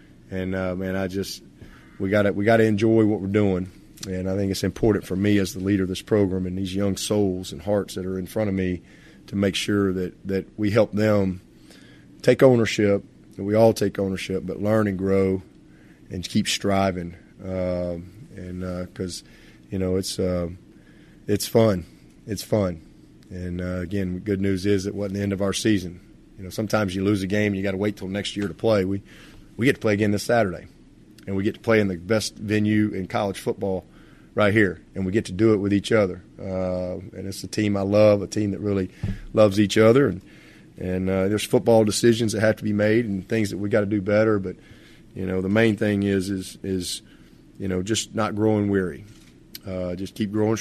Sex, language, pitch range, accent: male, English, 95-105 Hz, American